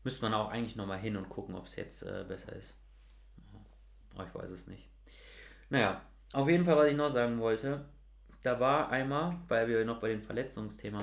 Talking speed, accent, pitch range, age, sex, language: 200 wpm, German, 105-150 Hz, 30-49, male, German